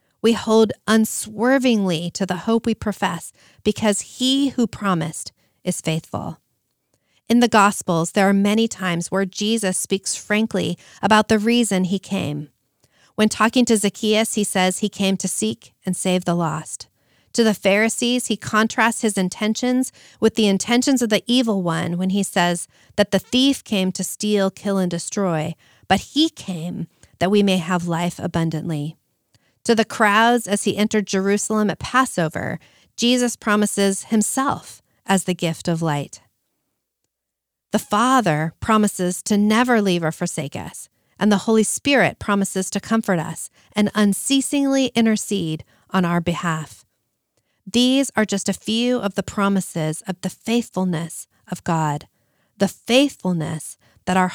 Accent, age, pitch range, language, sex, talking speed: American, 40-59, 170-220 Hz, English, female, 150 wpm